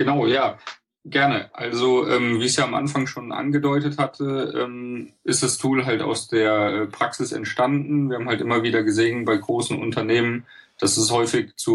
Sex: male